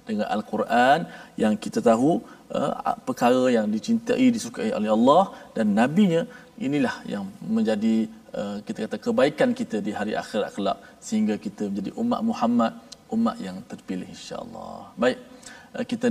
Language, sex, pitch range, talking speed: Malayalam, male, 165-250 Hz, 130 wpm